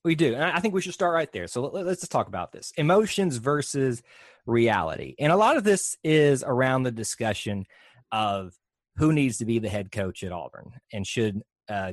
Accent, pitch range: American, 100-135 Hz